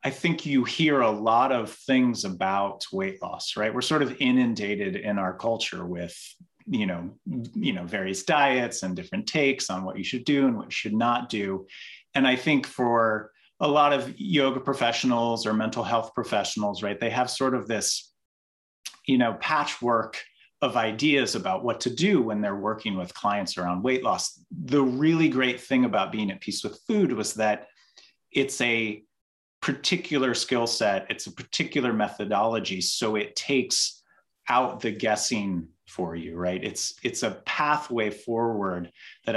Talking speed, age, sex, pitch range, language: 170 wpm, 30-49, male, 105-135 Hz, English